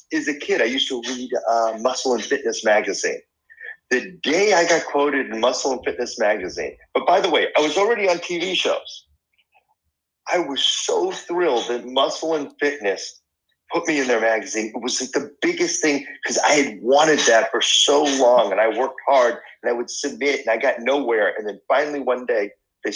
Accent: American